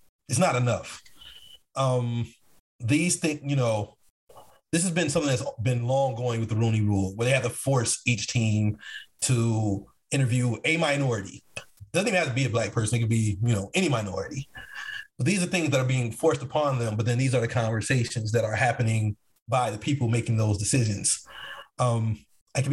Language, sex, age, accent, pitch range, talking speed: English, male, 30-49, American, 115-140 Hz, 195 wpm